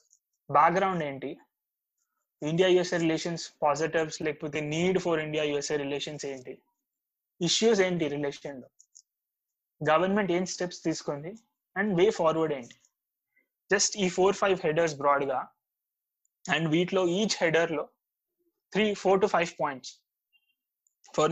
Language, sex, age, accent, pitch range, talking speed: Telugu, male, 20-39, native, 145-175 Hz, 125 wpm